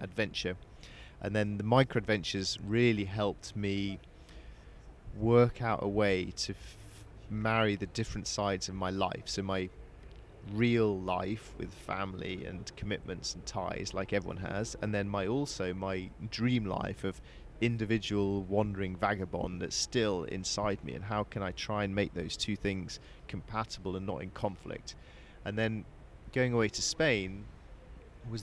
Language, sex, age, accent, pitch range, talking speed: English, male, 30-49, British, 95-110 Hz, 150 wpm